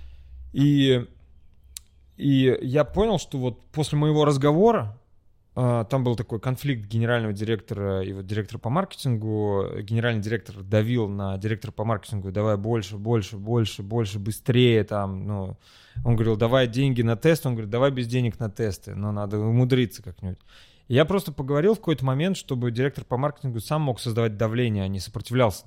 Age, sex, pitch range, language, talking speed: 20-39, male, 105-130 Hz, Russian, 160 wpm